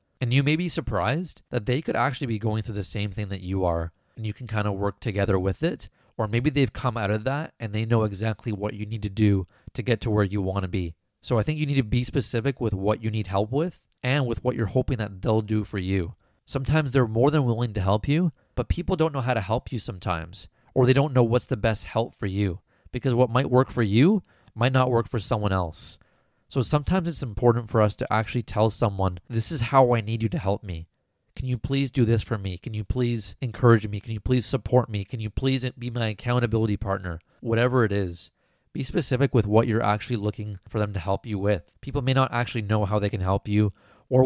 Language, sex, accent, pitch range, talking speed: English, male, American, 105-125 Hz, 250 wpm